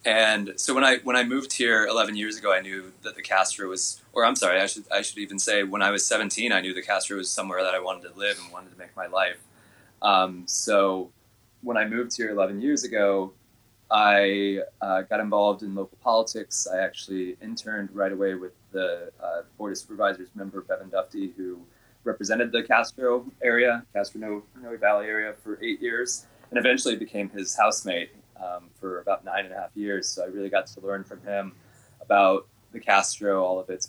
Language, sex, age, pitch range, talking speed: English, male, 20-39, 95-110 Hz, 205 wpm